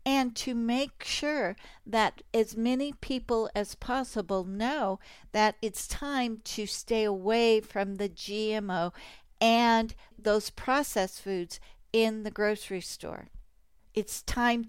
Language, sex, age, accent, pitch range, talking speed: English, female, 60-79, American, 210-250 Hz, 125 wpm